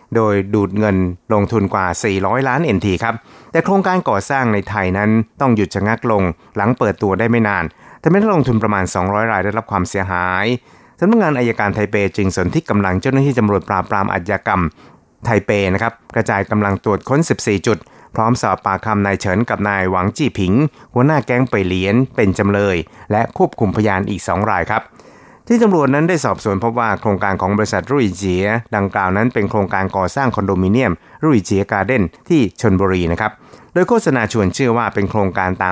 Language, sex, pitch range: Thai, male, 95-120 Hz